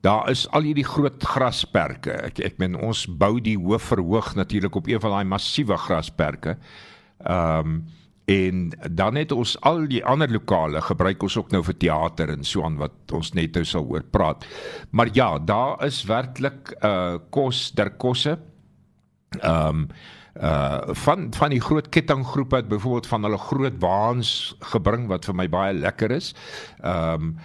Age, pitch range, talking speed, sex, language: 60-79, 95-130 Hz, 165 wpm, male, English